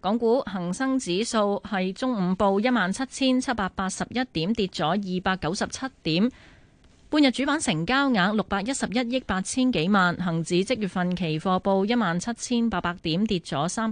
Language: Chinese